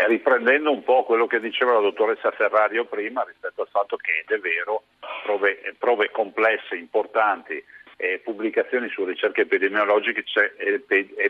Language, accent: Italian, native